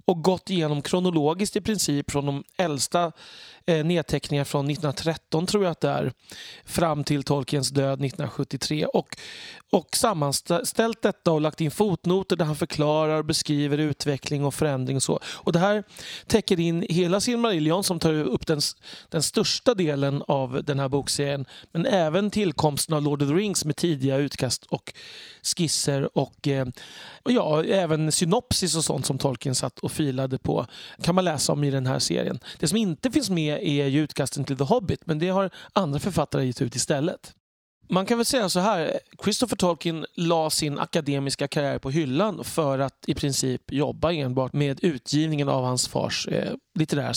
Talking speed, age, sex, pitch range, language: 175 wpm, 30-49, male, 140-180 Hz, Swedish